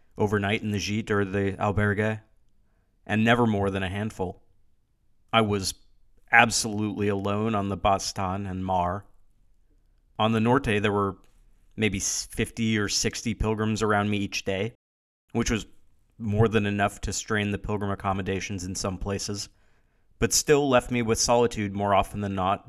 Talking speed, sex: 155 wpm, male